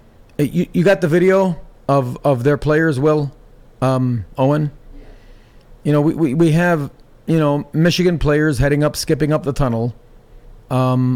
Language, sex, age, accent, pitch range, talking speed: English, male, 40-59, American, 125-160 Hz, 155 wpm